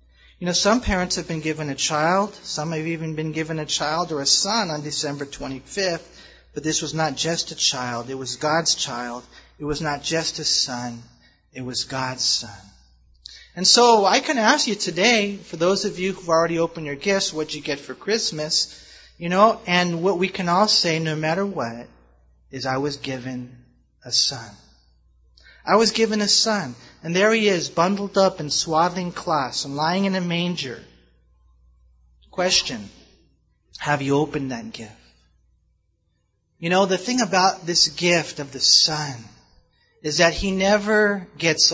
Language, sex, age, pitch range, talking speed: English, male, 30-49, 115-185 Hz, 175 wpm